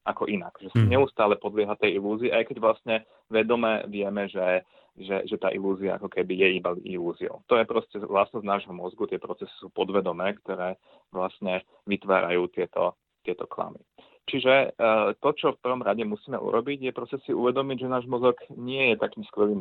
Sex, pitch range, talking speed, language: male, 95-120 Hz, 180 wpm, Slovak